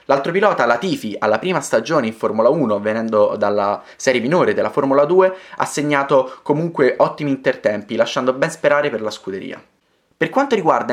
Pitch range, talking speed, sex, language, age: 125-165 Hz, 170 wpm, male, Italian, 20-39